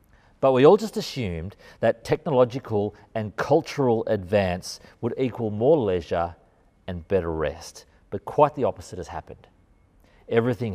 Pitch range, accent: 100-135 Hz, Australian